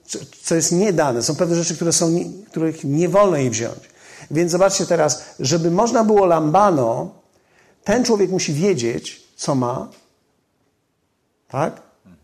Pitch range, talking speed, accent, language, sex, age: 160-195 Hz, 135 wpm, native, Polish, male, 50-69